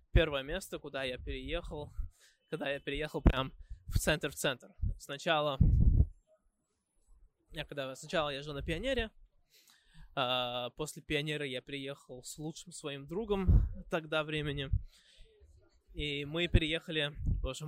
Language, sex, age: Russian, male, 20-39